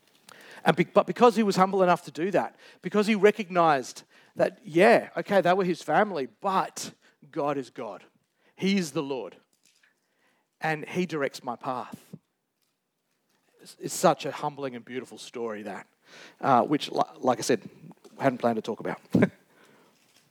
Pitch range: 145-180 Hz